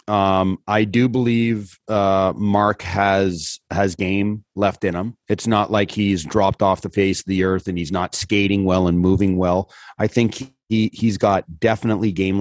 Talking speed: 205 wpm